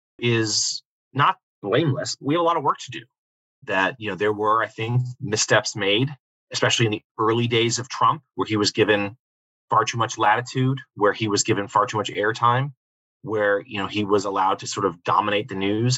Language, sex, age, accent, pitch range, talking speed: English, male, 30-49, American, 110-140 Hz, 205 wpm